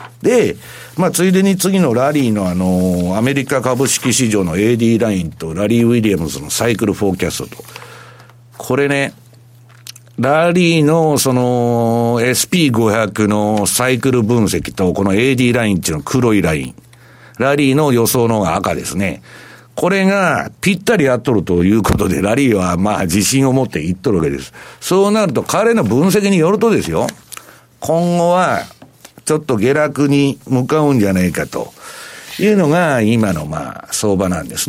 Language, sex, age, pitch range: Japanese, male, 60-79, 105-160 Hz